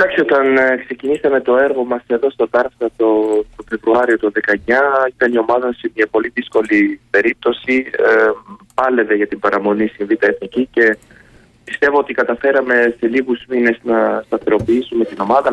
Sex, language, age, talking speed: male, Greek, 30-49, 150 wpm